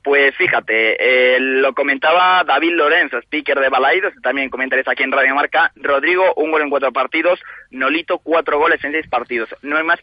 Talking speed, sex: 185 wpm, male